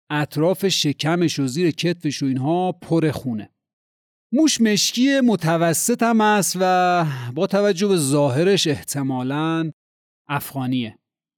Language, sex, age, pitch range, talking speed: Persian, male, 40-59, 145-200 Hz, 110 wpm